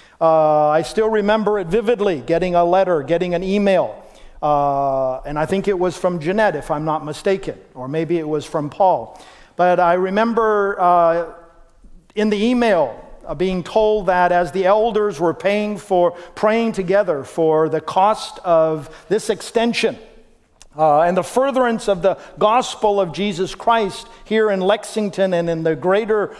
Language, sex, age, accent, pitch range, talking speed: English, male, 50-69, American, 170-215 Hz, 165 wpm